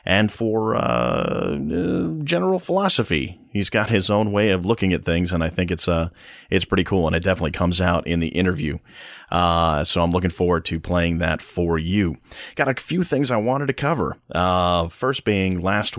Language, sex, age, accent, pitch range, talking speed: English, male, 30-49, American, 80-95 Hz, 200 wpm